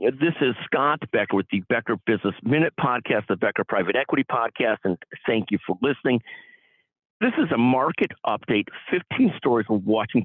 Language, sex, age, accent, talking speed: English, male, 50-69, American, 170 wpm